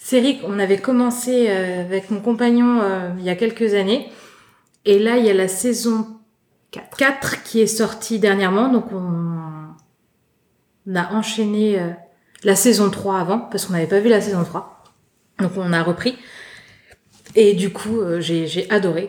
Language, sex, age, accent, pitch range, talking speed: French, female, 20-39, French, 185-230 Hz, 155 wpm